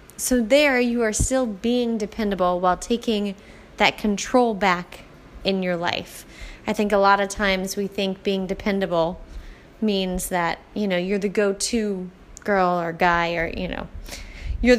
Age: 20-39